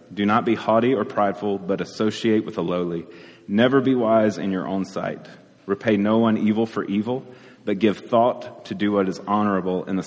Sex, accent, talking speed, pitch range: male, American, 205 wpm, 100-125 Hz